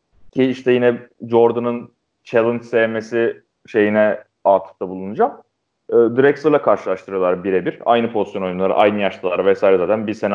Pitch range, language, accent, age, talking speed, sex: 110-135 Hz, Turkish, native, 30-49, 130 wpm, male